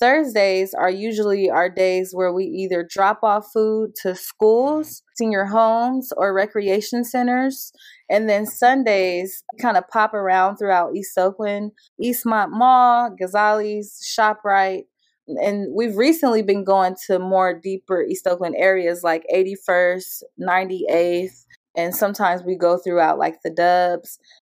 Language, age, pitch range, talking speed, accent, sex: English, 20-39, 185-225 Hz, 135 wpm, American, female